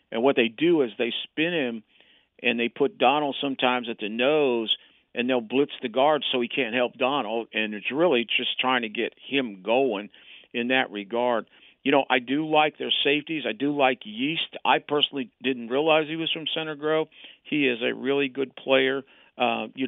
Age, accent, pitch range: 50-69, American, 120-150 Hz